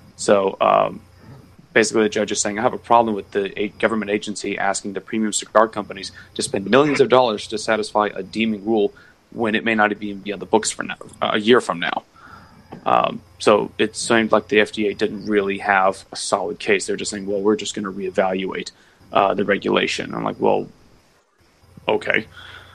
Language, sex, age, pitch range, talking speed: English, male, 30-49, 100-110 Hz, 195 wpm